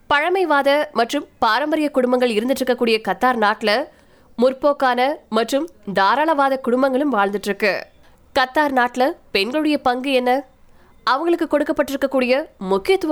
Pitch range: 230-285 Hz